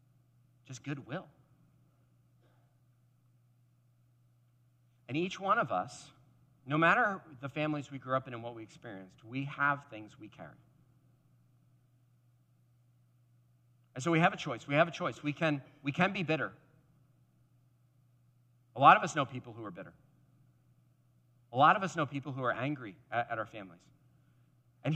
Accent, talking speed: American, 150 wpm